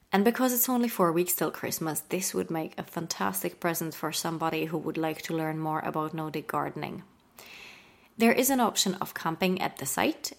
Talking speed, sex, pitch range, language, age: 195 wpm, female, 160-195 Hz, English, 30-49